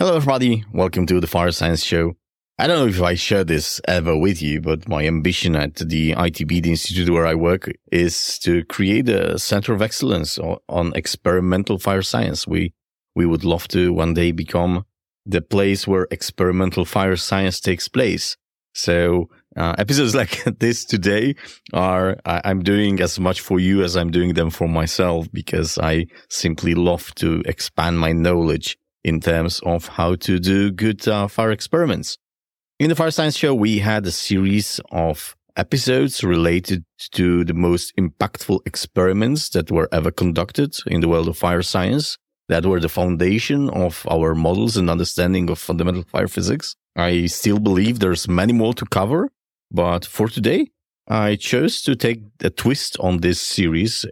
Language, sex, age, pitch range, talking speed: English, male, 30-49, 85-105 Hz, 170 wpm